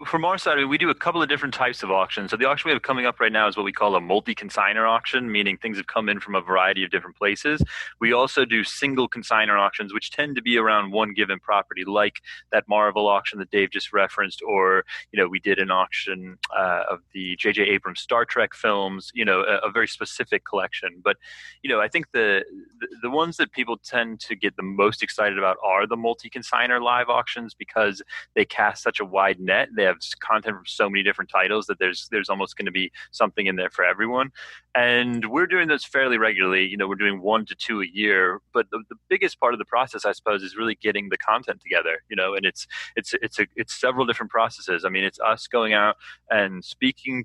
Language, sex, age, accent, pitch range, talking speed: English, male, 30-49, American, 100-125 Hz, 230 wpm